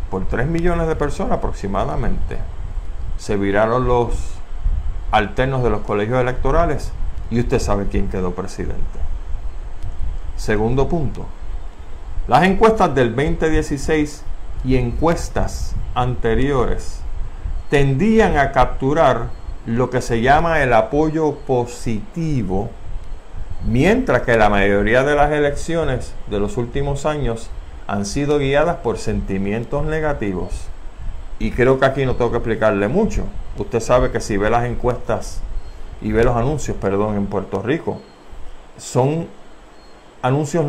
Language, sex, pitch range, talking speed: Spanish, male, 95-135 Hz, 120 wpm